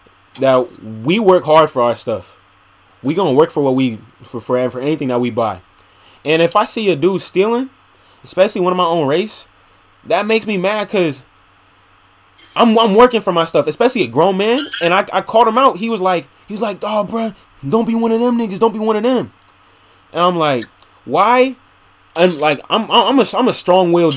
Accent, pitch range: American, 115-180 Hz